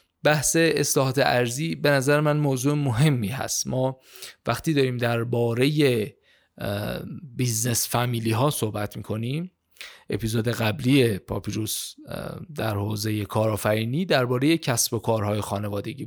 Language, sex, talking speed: Persian, male, 110 wpm